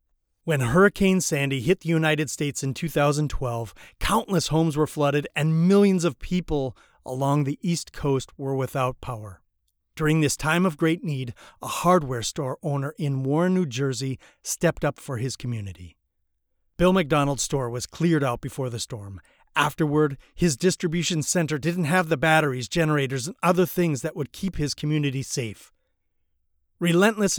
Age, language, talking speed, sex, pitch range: 30-49, English, 155 wpm, male, 125-165 Hz